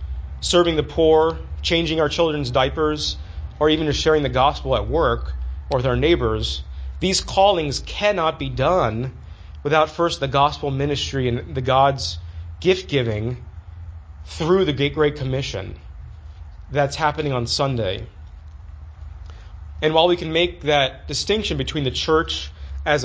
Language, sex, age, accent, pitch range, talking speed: English, male, 30-49, American, 95-145 Hz, 135 wpm